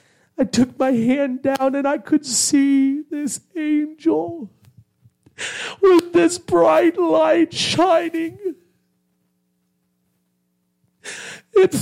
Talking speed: 85 wpm